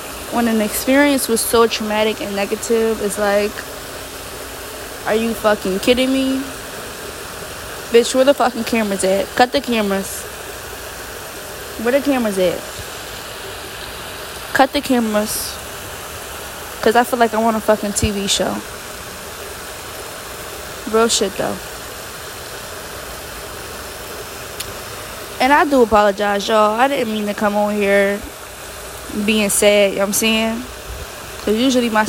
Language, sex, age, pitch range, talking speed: English, female, 20-39, 205-250 Hz, 125 wpm